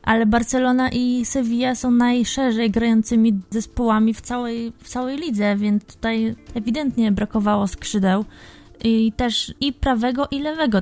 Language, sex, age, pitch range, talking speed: Polish, female, 20-39, 200-220 Hz, 130 wpm